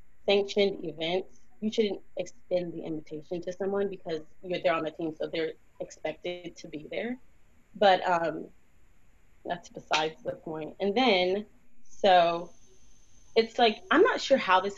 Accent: American